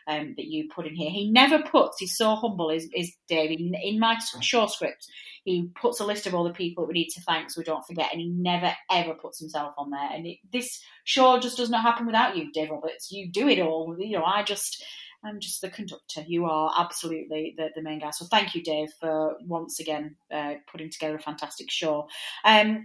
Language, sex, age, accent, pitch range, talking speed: English, female, 30-49, British, 155-190 Hz, 235 wpm